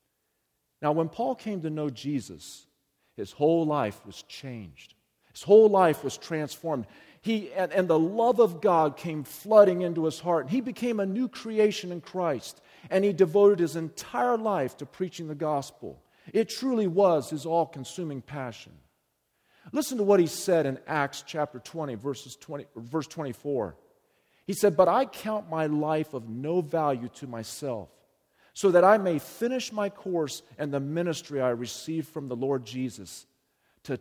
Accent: American